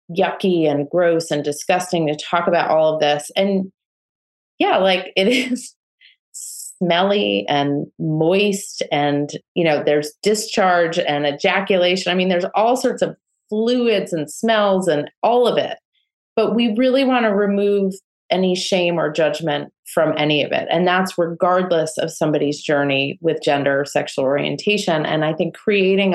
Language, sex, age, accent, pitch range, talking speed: English, female, 30-49, American, 155-205 Hz, 155 wpm